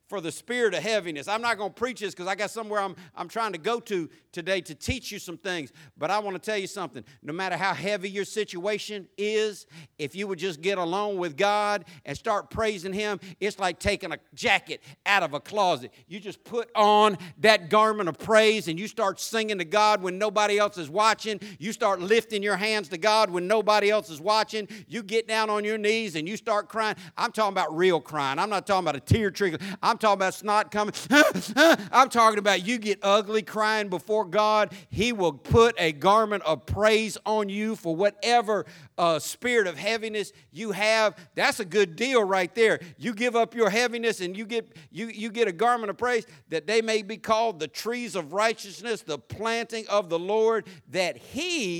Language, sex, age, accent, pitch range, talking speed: English, male, 50-69, American, 180-220 Hz, 210 wpm